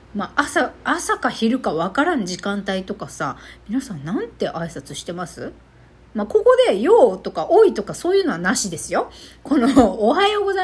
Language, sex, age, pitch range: Japanese, female, 40-59, 170-275 Hz